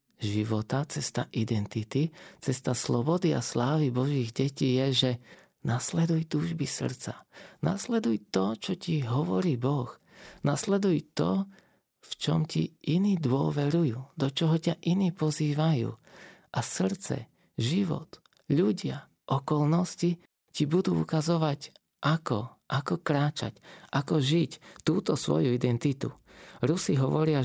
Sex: male